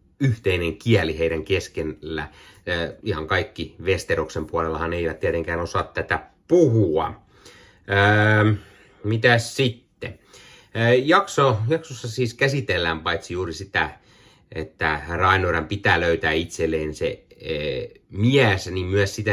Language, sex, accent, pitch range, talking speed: Finnish, male, native, 85-110 Hz, 110 wpm